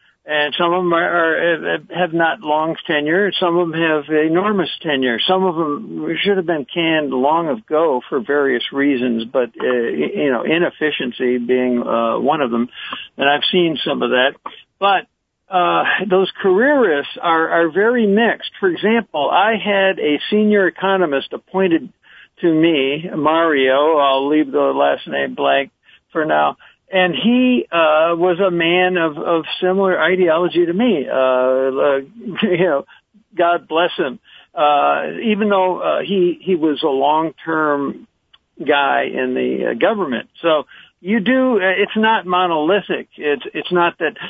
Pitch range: 145-195 Hz